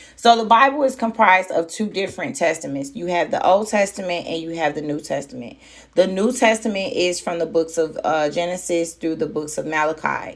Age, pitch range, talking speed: 30-49, 155-195 Hz, 205 wpm